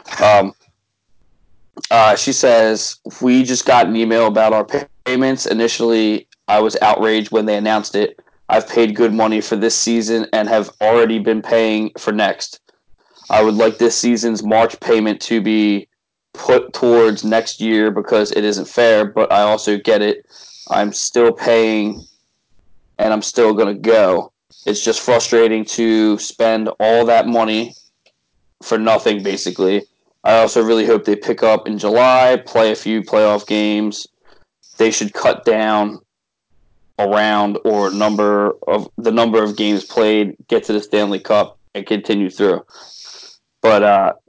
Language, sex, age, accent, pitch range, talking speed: English, male, 20-39, American, 105-115 Hz, 155 wpm